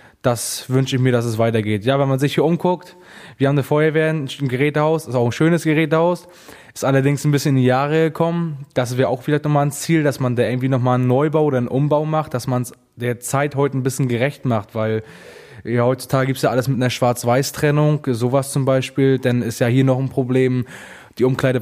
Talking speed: 230 wpm